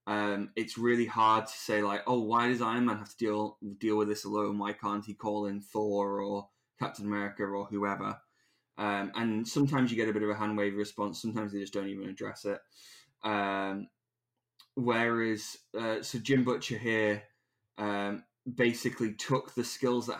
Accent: British